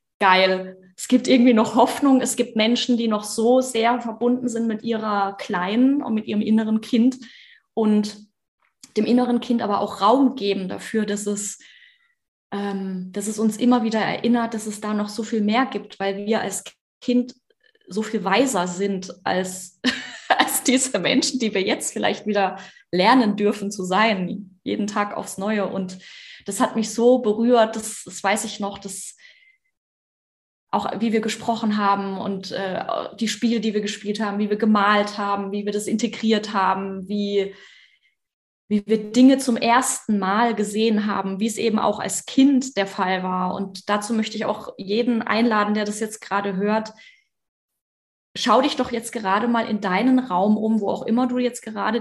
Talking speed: 175 wpm